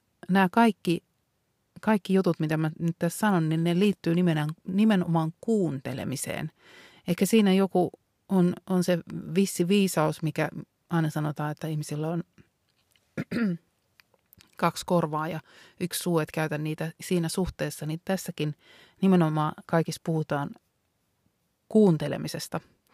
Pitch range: 155-195 Hz